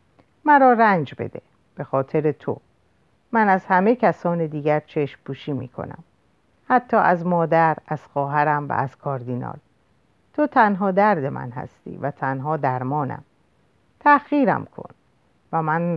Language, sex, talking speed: Persian, female, 130 wpm